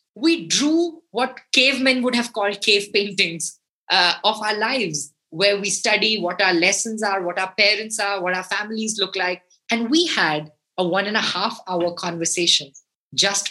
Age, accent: 20-39, Indian